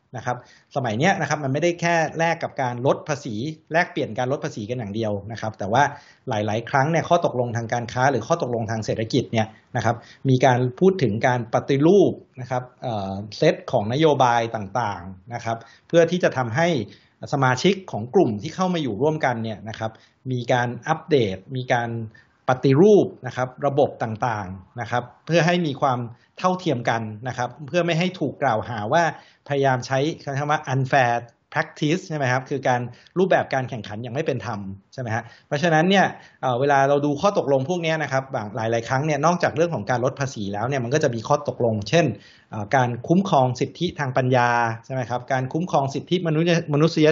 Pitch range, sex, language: 120-155 Hz, male, Thai